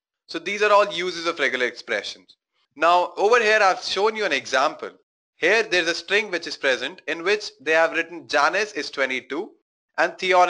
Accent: Indian